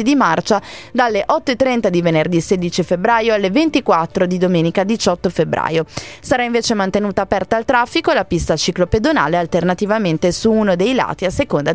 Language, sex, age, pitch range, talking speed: Italian, female, 20-39, 180-250 Hz, 155 wpm